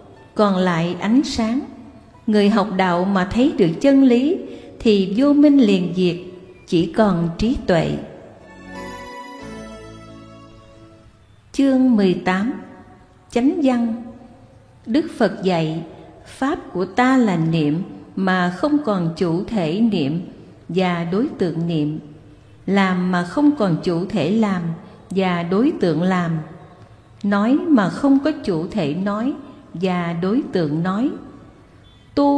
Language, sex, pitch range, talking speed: Vietnamese, female, 170-255 Hz, 120 wpm